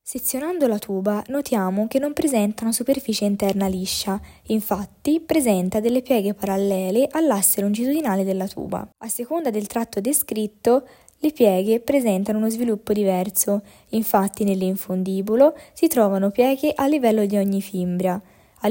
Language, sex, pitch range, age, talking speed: Italian, female, 195-250 Hz, 10-29, 135 wpm